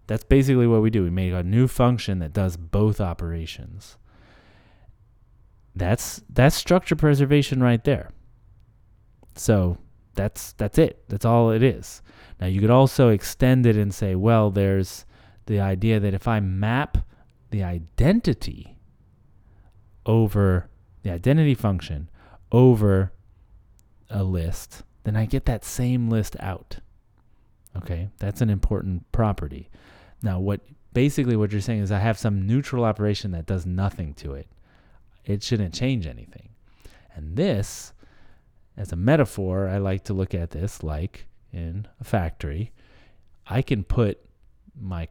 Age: 30-49